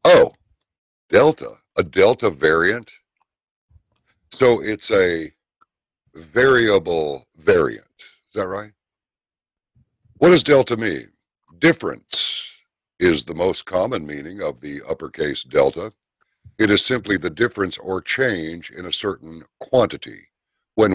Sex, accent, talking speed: male, American, 110 wpm